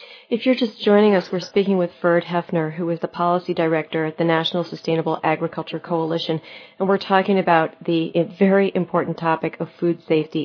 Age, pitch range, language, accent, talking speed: 40-59, 170-205 Hz, English, American, 185 wpm